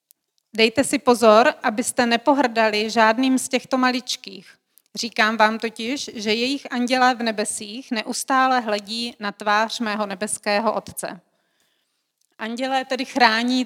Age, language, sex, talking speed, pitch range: 30-49, Czech, female, 120 wpm, 215-250 Hz